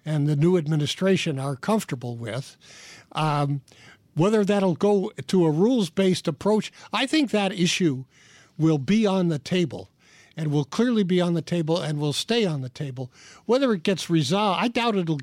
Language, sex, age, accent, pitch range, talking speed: English, male, 60-79, American, 150-190 Hz, 175 wpm